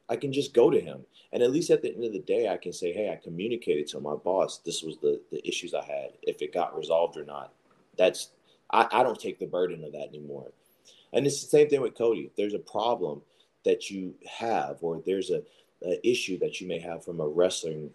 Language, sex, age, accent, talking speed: English, male, 30-49, American, 240 wpm